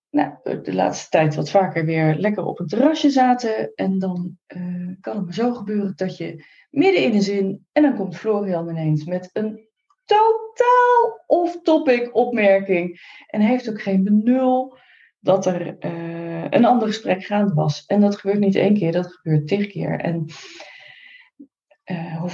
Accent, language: Dutch, Dutch